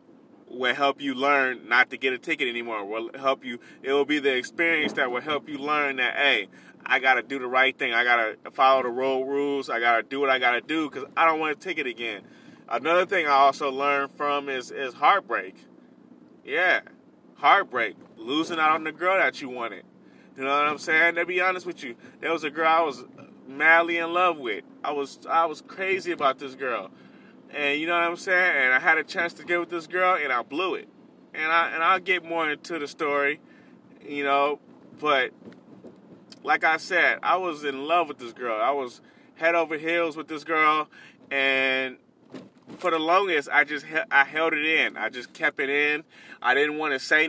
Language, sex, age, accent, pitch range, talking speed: English, male, 20-39, American, 140-165 Hz, 215 wpm